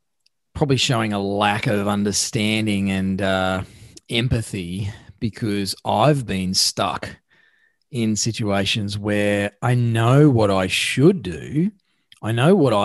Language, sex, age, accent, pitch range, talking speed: English, male, 40-59, Australian, 100-135 Hz, 115 wpm